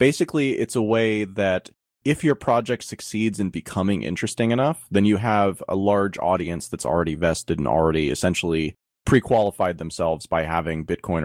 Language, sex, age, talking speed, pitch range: English, male, 30-49, 160 wpm, 85-105 Hz